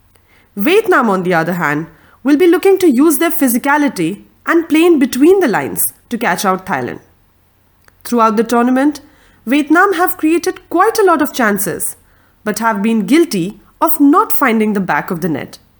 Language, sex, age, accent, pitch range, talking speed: English, female, 30-49, Indian, 185-295 Hz, 170 wpm